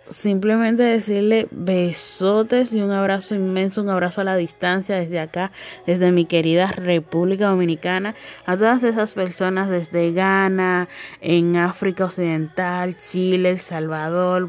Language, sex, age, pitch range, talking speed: Spanish, female, 20-39, 180-230 Hz, 130 wpm